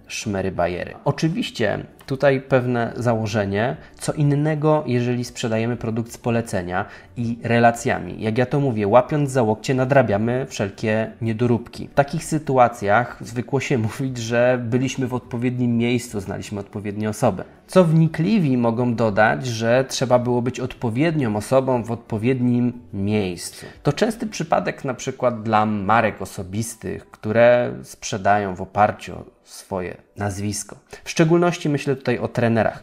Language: Polish